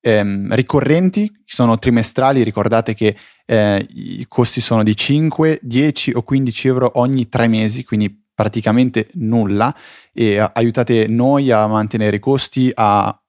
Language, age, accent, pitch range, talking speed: Italian, 20-39, native, 110-135 Hz, 140 wpm